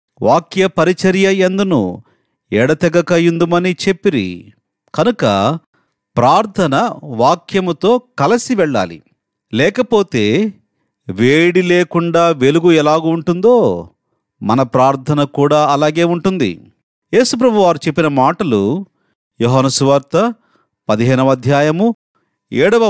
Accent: native